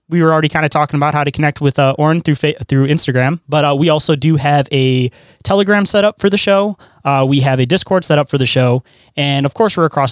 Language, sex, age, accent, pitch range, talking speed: English, male, 20-39, American, 130-160 Hz, 265 wpm